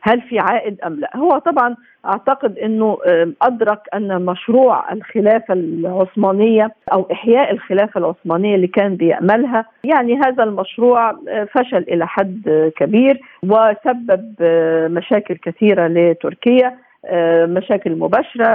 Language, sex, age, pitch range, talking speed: Arabic, female, 50-69, 180-240 Hz, 110 wpm